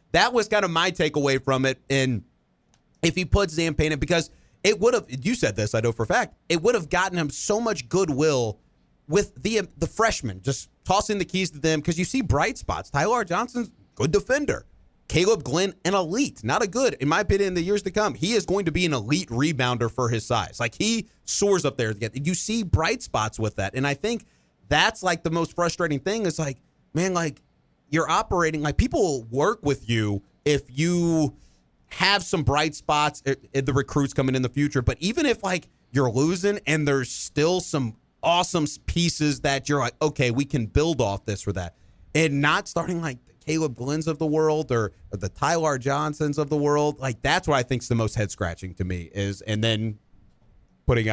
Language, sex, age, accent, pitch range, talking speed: English, male, 30-49, American, 120-175 Hz, 210 wpm